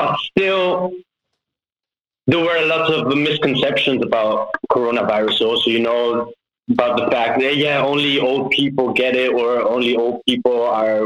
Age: 30-49